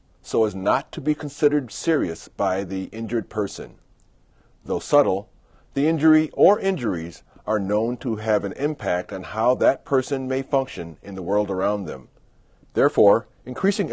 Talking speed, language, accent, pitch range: 155 wpm, English, American, 105-150 Hz